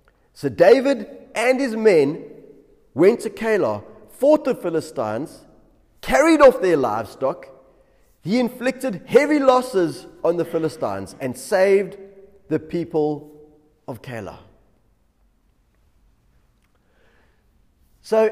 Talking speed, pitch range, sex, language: 95 wpm, 155-245 Hz, male, English